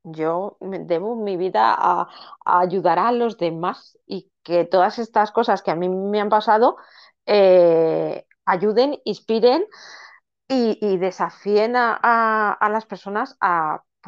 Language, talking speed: Spanish, 135 wpm